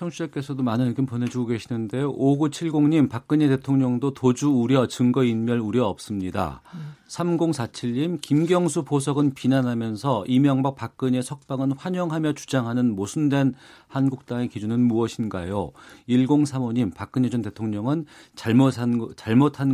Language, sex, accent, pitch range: Korean, male, native, 105-135 Hz